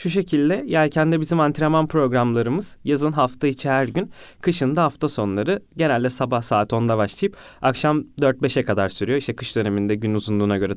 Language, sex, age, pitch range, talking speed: Turkish, male, 20-39, 110-140 Hz, 165 wpm